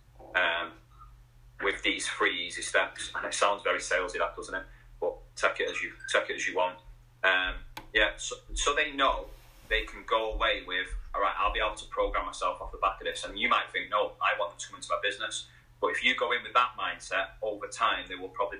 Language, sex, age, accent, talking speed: English, male, 30-49, British, 240 wpm